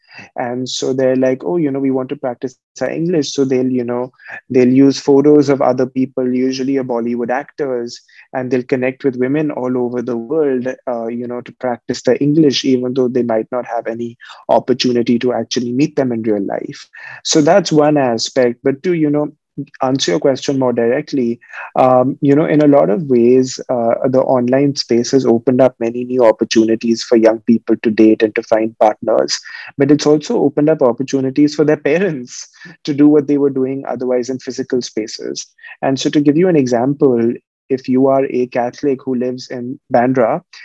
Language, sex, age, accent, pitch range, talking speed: English, male, 20-39, Indian, 120-140 Hz, 195 wpm